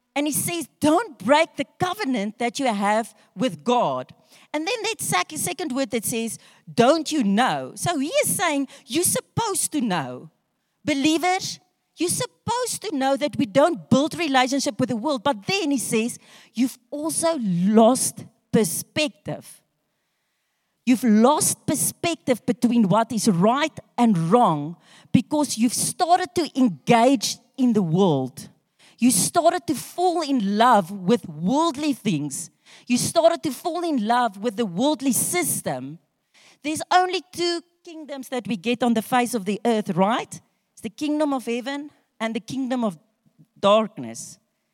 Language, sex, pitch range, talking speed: English, female, 210-300 Hz, 150 wpm